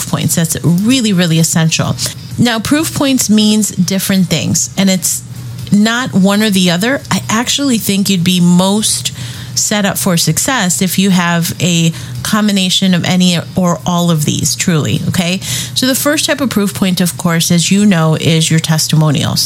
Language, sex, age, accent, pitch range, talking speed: English, female, 30-49, American, 165-205 Hz, 175 wpm